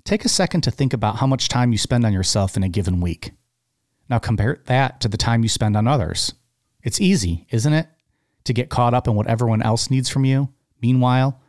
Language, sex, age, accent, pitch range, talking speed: English, male, 40-59, American, 105-130 Hz, 225 wpm